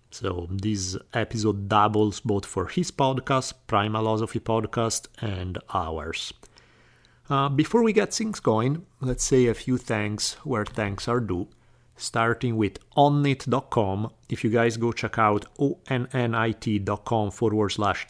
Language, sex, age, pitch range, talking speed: English, male, 40-59, 100-125 Hz, 130 wpm